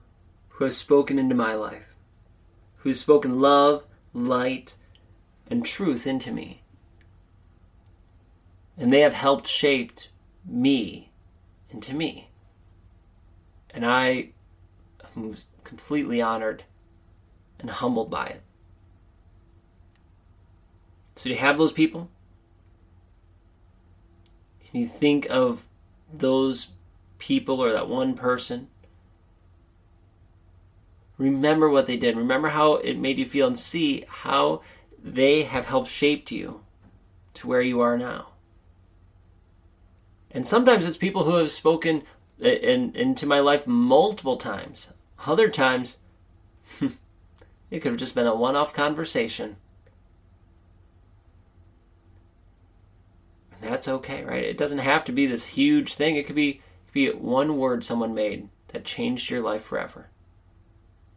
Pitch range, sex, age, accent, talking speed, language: 90-135 Hz, male, 30-49, American, 120 wpm, English